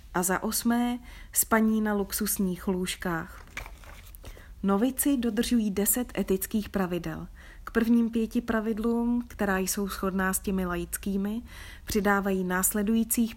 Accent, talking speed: native, 110 wpm